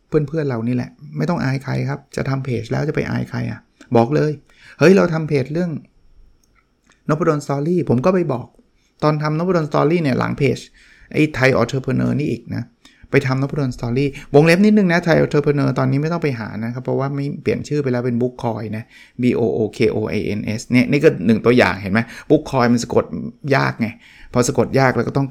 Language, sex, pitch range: Thai, male, 115-155 Hz